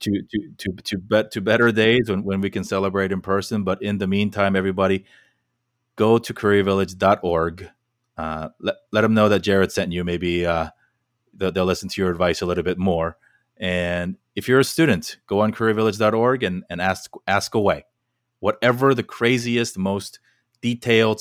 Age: 30-49